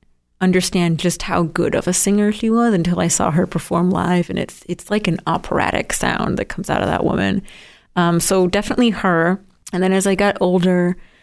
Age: 30-49